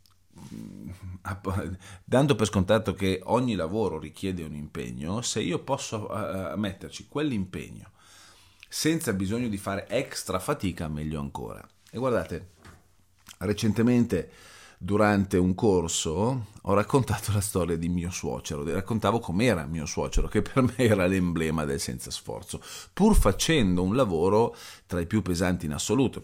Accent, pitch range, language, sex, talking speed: native, 85-105 Hz, Italian, male, 135 wpm